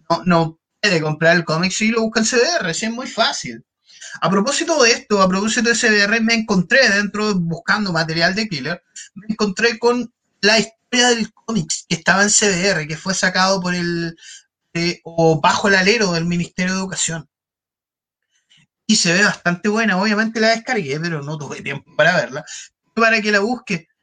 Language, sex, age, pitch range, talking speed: Spanish, male, 30-49, 175-230 Hz, 180 wpm